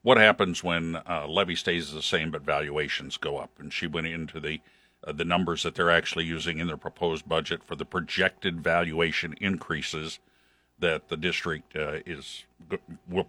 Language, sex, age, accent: English, male, 60-79, American